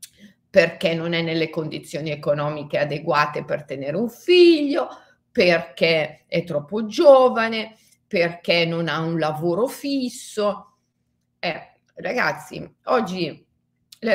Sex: female